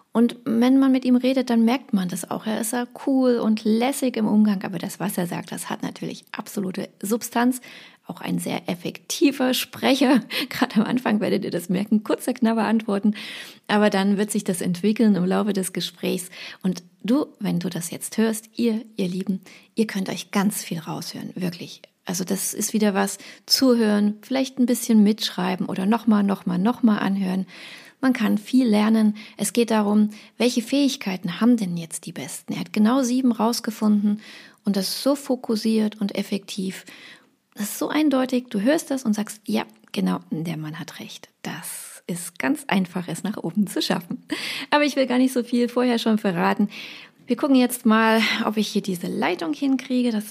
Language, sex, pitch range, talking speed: German, female, 195-245 Hz, 185 wpm